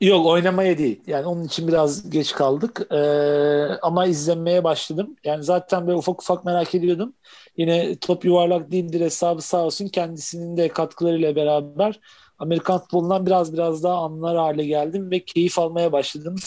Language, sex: Turkish, male